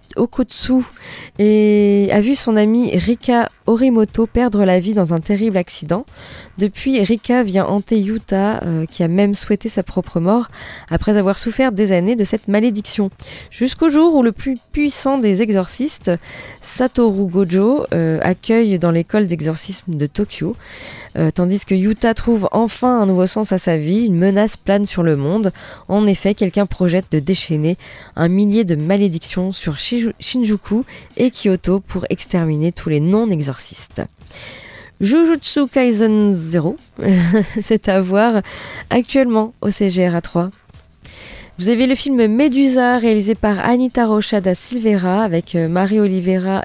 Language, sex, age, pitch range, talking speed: French, female, 20-39, 185-230 Hz, 145 wpm